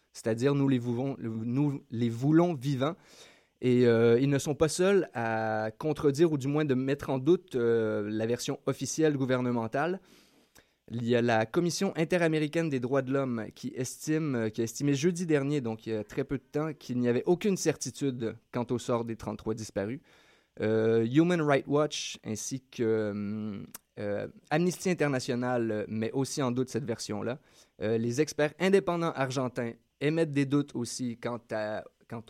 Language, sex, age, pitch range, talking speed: French, male, 20-39, 115-145 Hz, 170 wpm